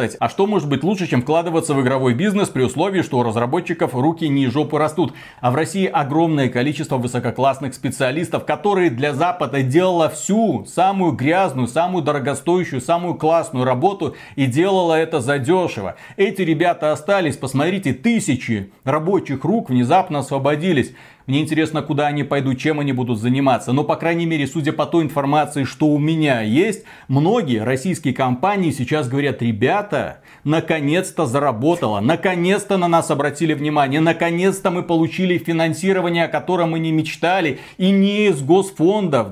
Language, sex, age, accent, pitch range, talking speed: Russian, male, 30-49, native, 140-175 Hz, 150 wpm